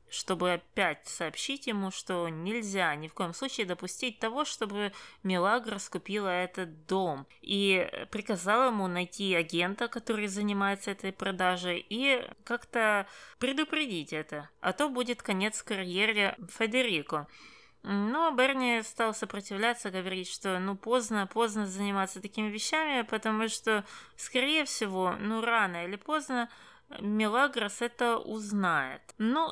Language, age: Russian, 20-39